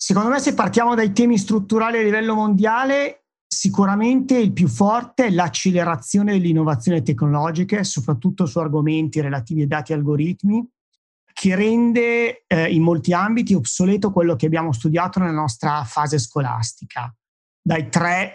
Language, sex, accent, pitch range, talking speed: Italian, male, native, 150-195 Hz, 140 wpm